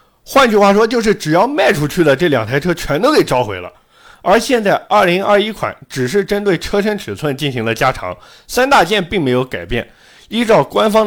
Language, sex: Chinese, male